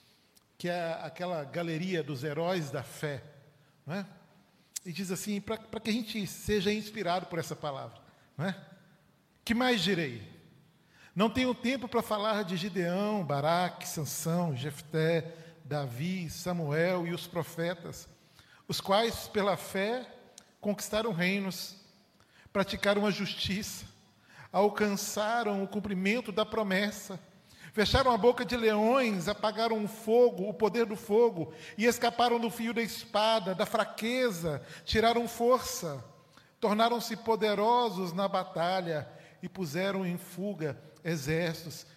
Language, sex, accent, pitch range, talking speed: Portuguese, male, Brazilian, 155-215 Hz, 125 wpm